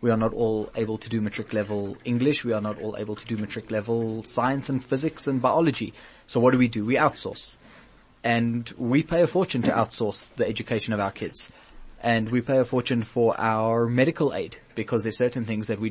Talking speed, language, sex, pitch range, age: 210 wpm, English, male, 110-130 Hz, 20-39